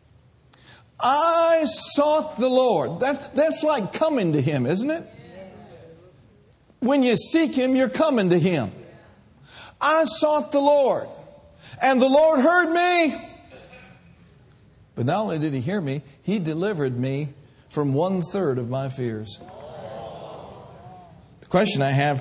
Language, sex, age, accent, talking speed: English, male, 60-79, American, 130 wpm